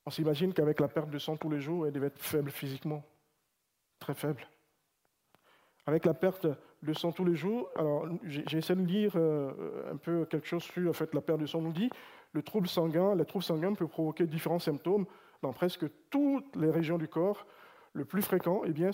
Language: French